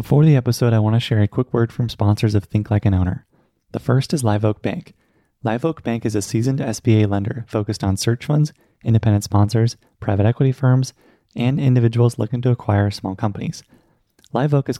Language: English